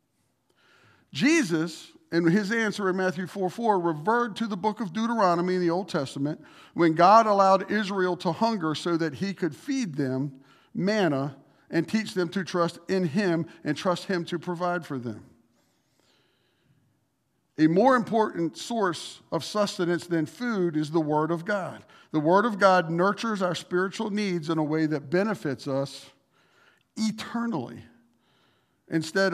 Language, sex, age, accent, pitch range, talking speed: English, male, 50-69, American, 155-195 Hz, 150 wpm